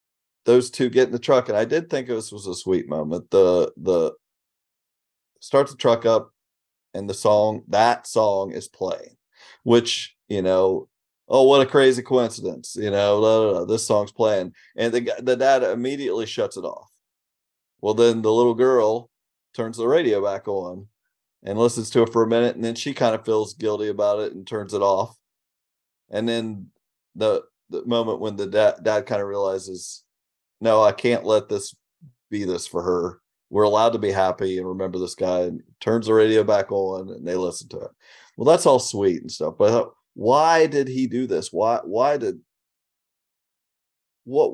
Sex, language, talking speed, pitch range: male, English, 190 wpm, 100-130 Hz